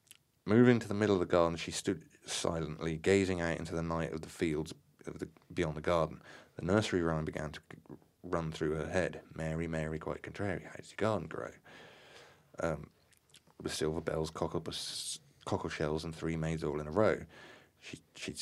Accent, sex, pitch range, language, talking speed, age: British, male, 80-100 Hz, English, 180 wpm, 30-49